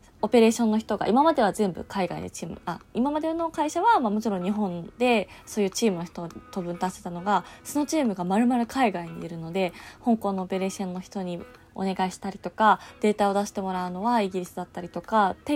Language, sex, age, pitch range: Japanese, female, 20-39, 190-240 Hz